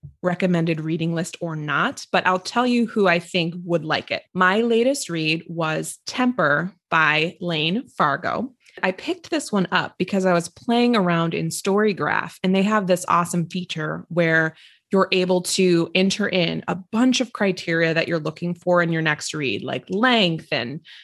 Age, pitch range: 20-39, 165-200 Hz